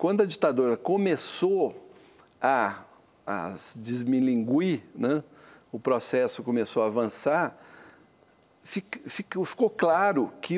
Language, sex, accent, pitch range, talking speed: Portuguese, male, Brazilian, 130-185 Hz, 95 wpm